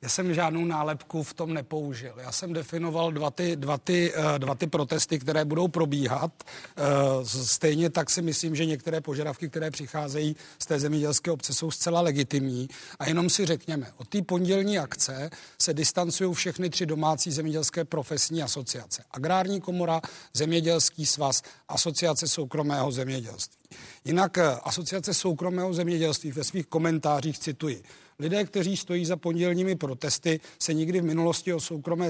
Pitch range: 145-170 Hz